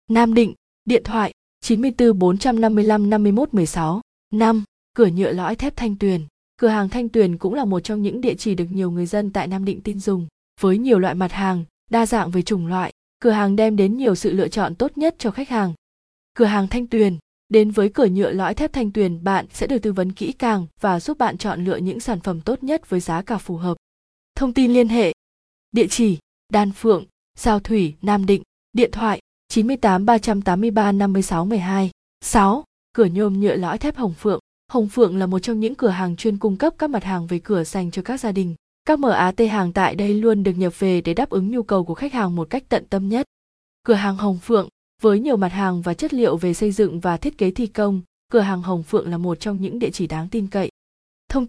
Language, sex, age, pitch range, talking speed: Vietnamese, female, 20-39, 190-230 Hz, 225 wpm